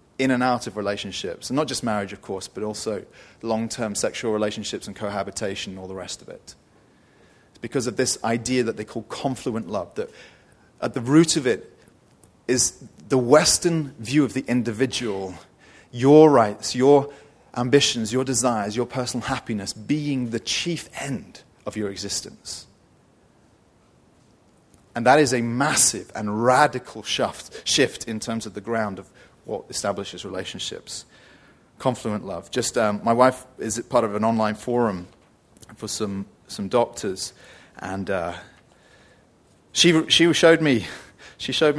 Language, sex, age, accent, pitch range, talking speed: English, male, 30-49, British, 105-130 Hz, 150 wpm